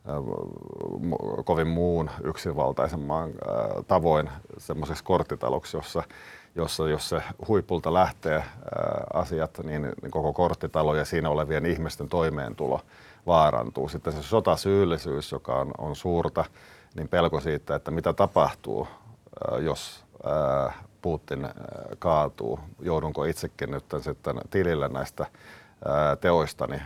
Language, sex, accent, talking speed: Finnish, male, native, 100 wpm